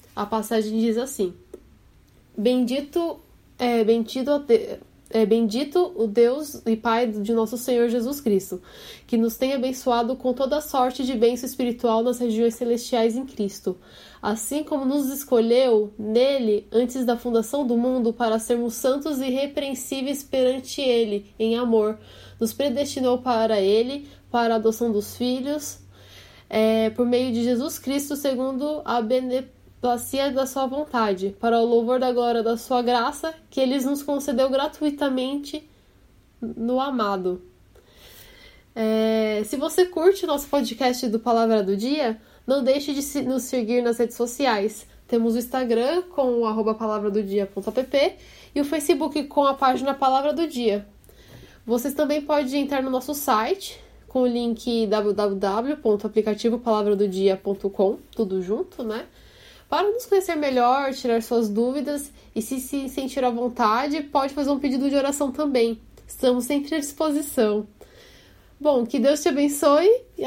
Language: Portuguese